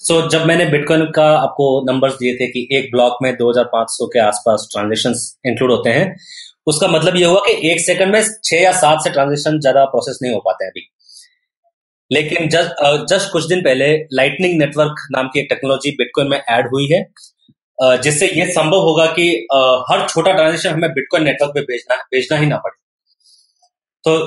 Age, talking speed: 30-49, 185 wpm